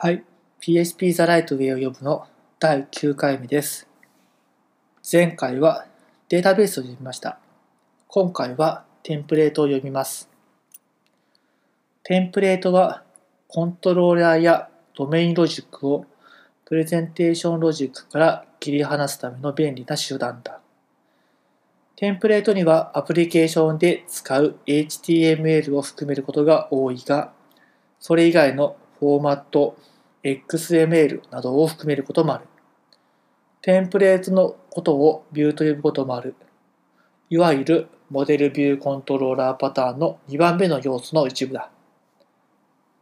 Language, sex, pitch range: Japanese, male, 140-170 Hz